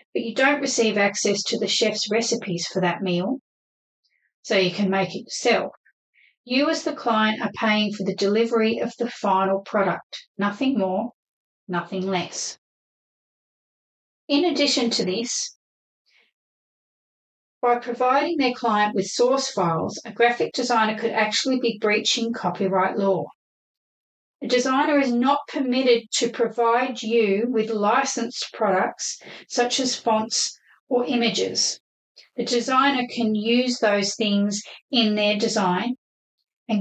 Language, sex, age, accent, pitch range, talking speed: English, female, 40-59, Australian, 210-245 Hz, 130 wpm